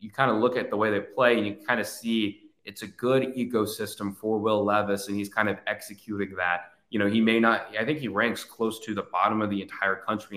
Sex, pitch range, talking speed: male, 100-115 Hz, 255 wpm